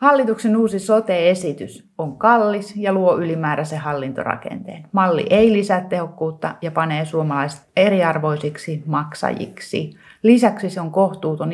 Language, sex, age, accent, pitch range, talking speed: Finnish, female, 30-49, native, 150-185 Hz, 115 wpm